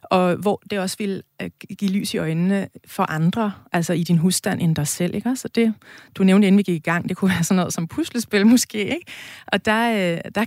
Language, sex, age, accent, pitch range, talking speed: Danish, female, 30-49, native, 175-210 Hz, 230 wpm